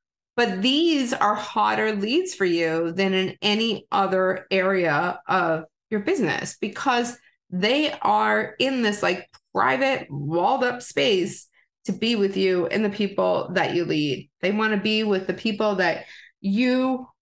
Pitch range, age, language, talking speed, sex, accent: 190-235 Hz, 30-49, English, 150 wpm, female, American